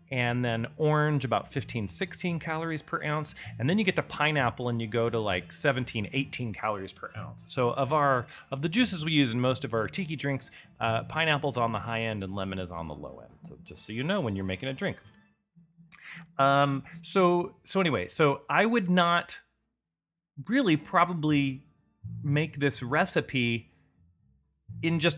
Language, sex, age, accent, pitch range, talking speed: English, male, 30-49, American, 115-155 Hz, 185 wpm